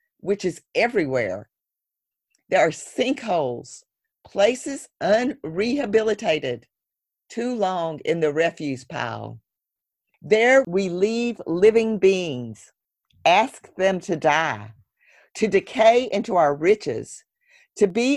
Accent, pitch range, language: American, 165-235 Hz, English